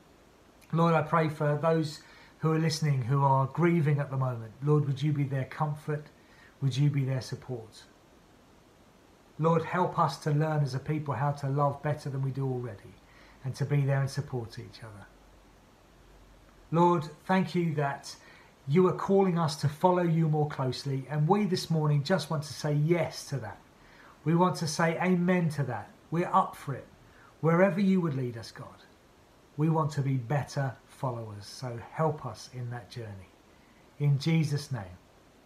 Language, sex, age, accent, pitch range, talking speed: English, male, 40-59, British, 135-180 Hz, 180 wpm